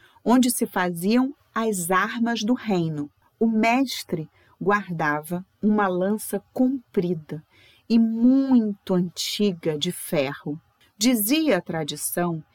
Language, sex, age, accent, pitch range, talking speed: Portuguese, female, 40-59, Brazilian, 170-225 Hz, 100 wpm